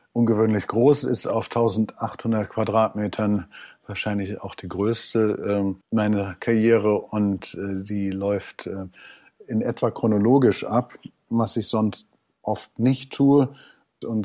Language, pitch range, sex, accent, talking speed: German, 105-115 Hz, male, German, 120 wpm